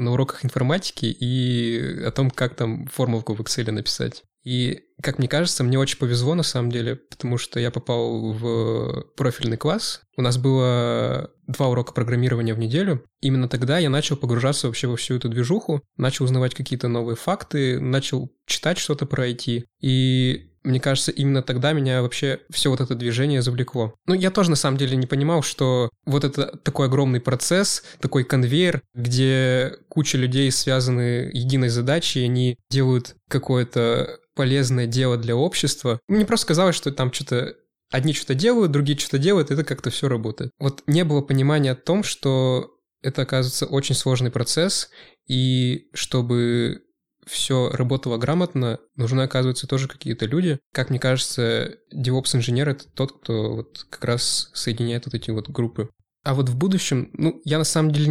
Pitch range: 120-145 Hz